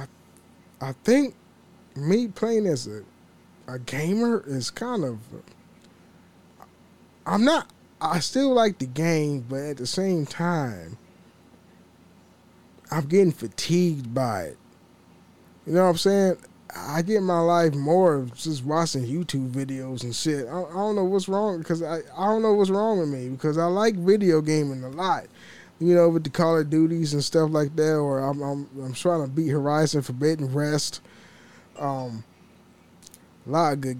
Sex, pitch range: male, 130-170 Hz